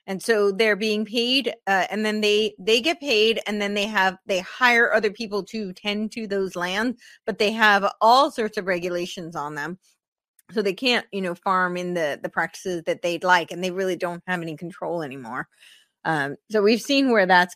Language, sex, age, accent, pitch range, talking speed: English, female, 30-49, American, 185-225 Hz, 210 wpm